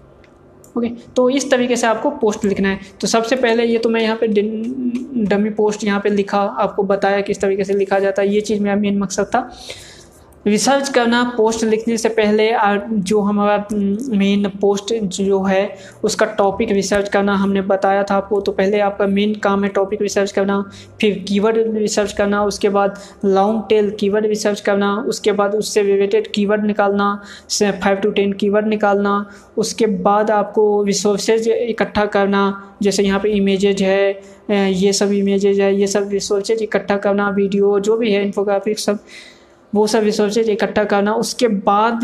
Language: Hindi